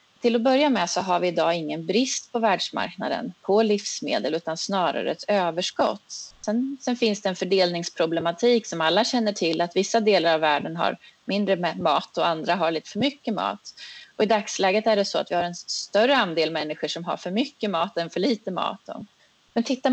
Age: 30-49